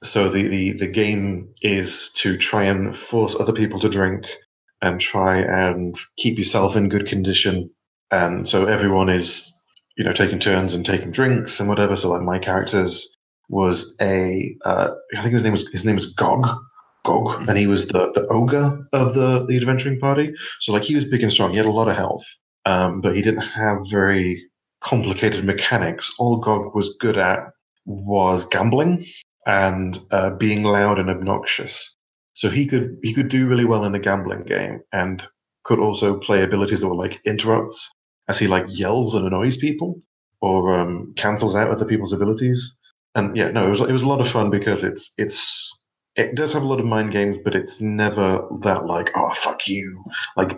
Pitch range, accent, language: 95-120 Hz, British, English